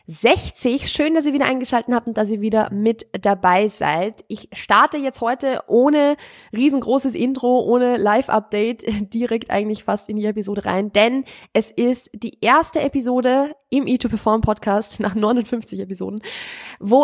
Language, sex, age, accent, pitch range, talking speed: German, female, 20-39, German, 200-245 Hz, 150 wpm